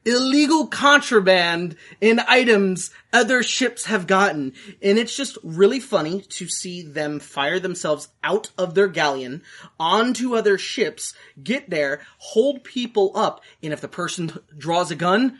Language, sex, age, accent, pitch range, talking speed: English, male, 20-39, American, 160-220 Hz, 145 wpm